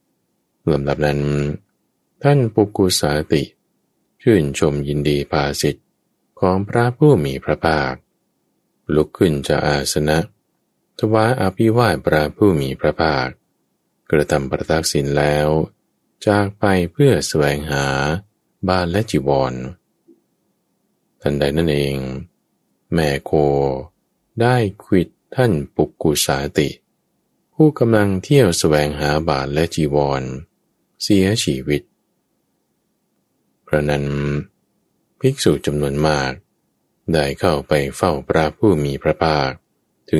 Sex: male